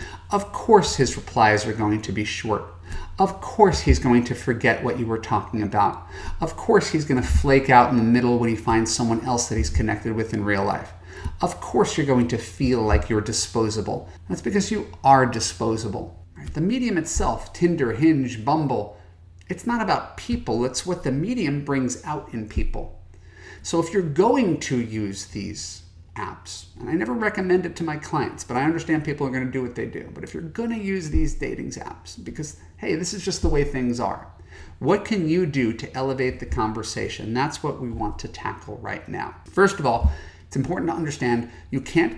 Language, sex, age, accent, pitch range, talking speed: English, male, 40-59, American, 95-145 Hz, 205 wpm